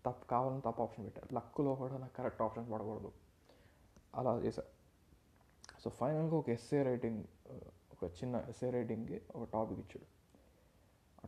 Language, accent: Telugu, native